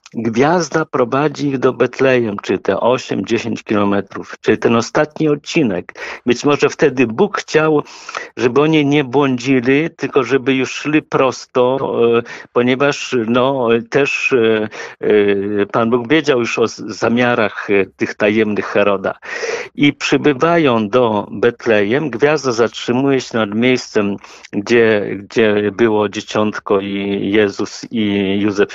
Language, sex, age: Polish, male, 50-69